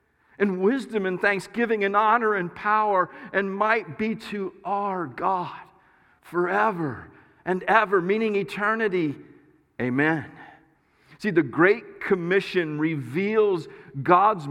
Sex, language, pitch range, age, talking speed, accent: male, English, 145-205 Hz, 50-69, 110 wpm, American